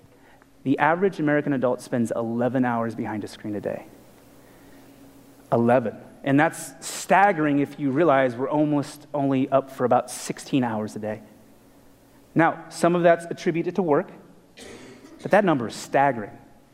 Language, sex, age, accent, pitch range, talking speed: English, male, 30-49, American, 140-215 Hz, 145 wpm